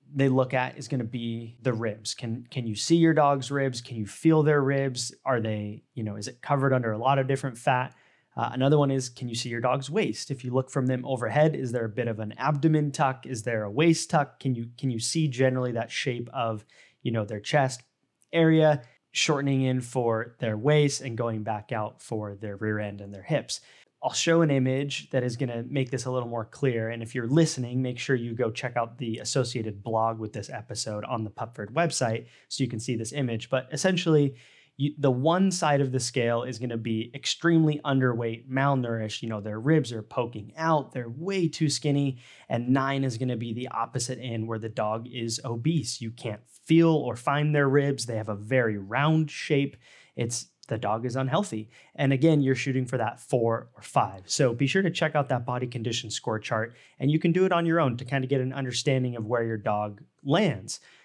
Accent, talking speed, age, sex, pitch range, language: American, 225 wpm, 20-39, male, 115-140 Hz, English